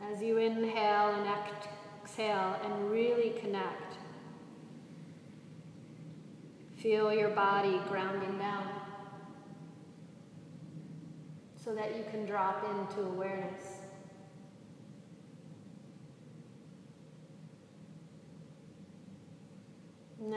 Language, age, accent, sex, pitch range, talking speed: English, 30-49, American, female, 170-210 Hz, 60 wpm